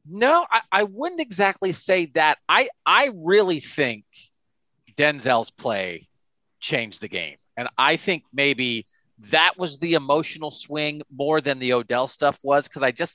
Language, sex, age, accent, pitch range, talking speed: English, male, 40-59, American, 140-170 Hz, 155 wpm